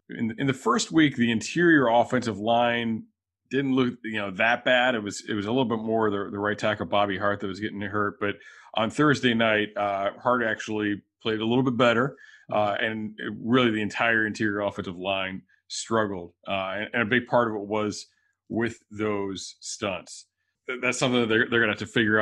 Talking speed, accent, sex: 200 wpm, American, male